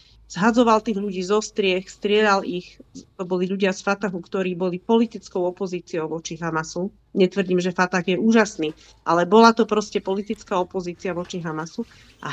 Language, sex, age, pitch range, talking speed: Slovak, female, 40-59, 190-230 Hz, 150 wpm